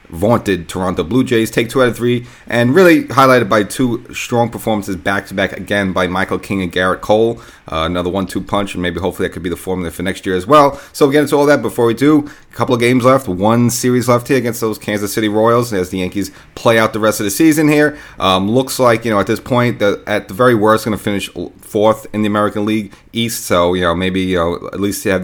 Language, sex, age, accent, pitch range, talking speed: English, male, 30-49, American, 95-120 Hz, 255 wpm